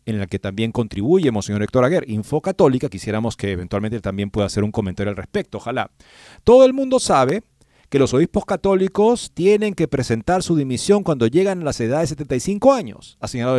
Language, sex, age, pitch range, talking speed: Spanish, male, 40-59, 110-180 Hz, 200 wpm